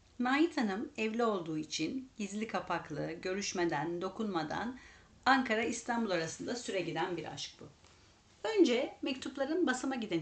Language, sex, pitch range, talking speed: Turkish, female, 175-270 Hz, 115 wpm